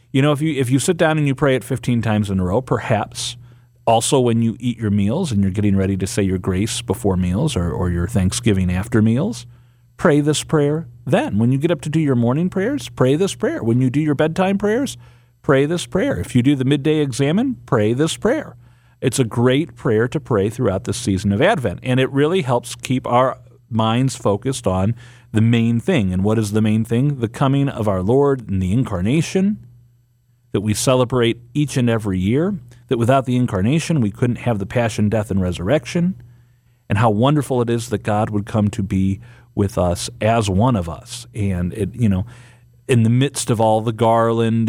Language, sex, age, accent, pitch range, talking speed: English, male, 40-59, American, 105-130 Hz, 210 wpm